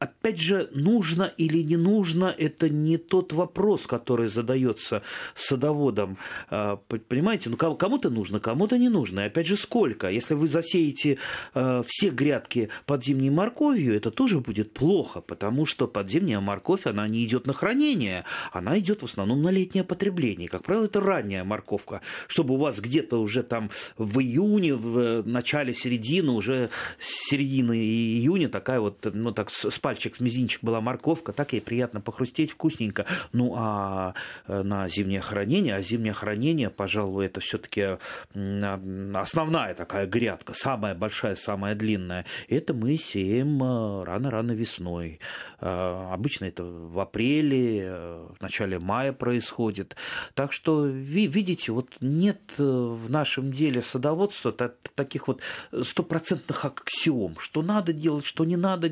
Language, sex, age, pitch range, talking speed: Russian, male, 30-49, 105-165 Hz, 140 wpm